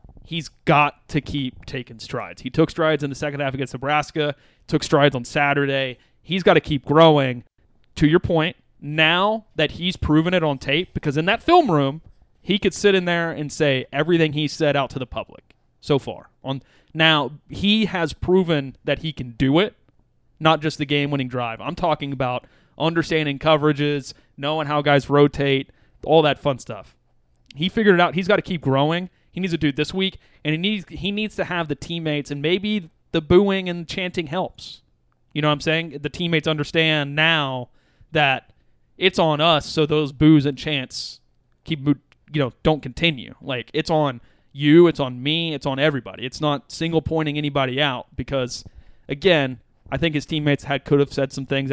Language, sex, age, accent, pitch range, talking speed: English, male, 30-49, American, 135-165 Hz, 190 wpm